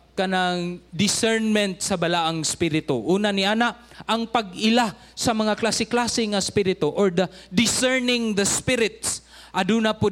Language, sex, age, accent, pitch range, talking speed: English, male, 20-39, Filipino, 165-210 Hz, 140 wpm